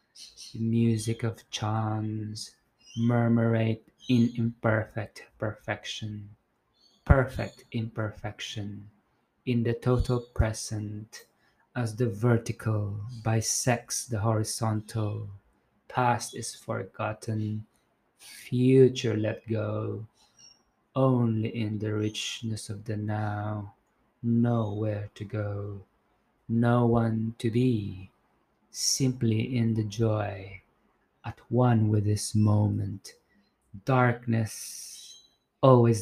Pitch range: 105-120 Hz